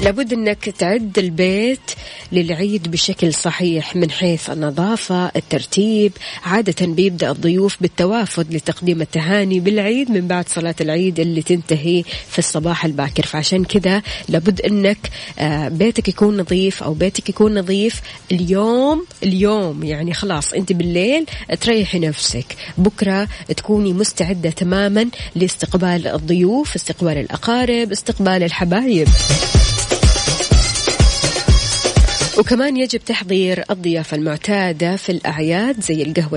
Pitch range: 170-210 Hz